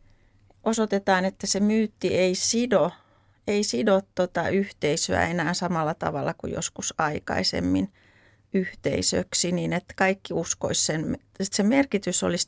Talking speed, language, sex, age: 125 wpm, Finnish, female, 30-49